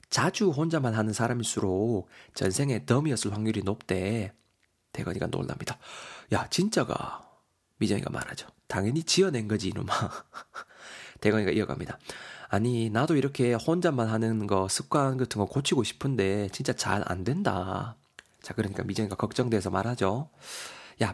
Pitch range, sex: 105-150 Hz, male